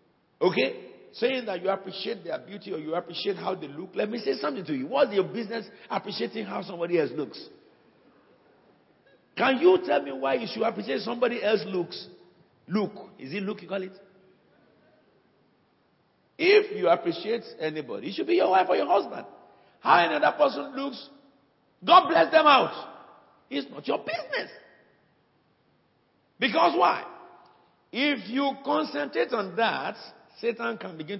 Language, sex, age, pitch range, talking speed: English, male, 50-69, 150-240 Hz, 155 wpm